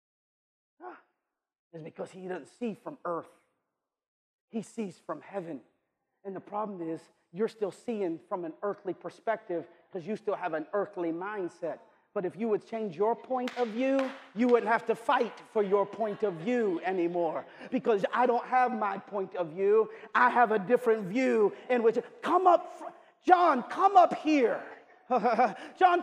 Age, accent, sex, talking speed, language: 40-59, American, male, 165 wpm, English